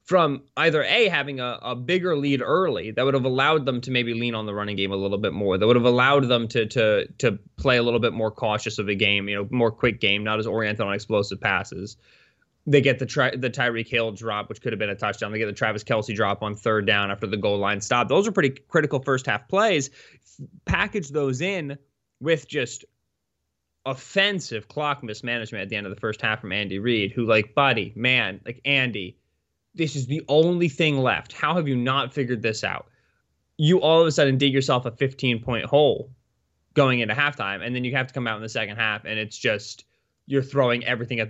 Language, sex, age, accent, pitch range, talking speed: English, male, 20-39, American, 105-140 Hz, 225 wpm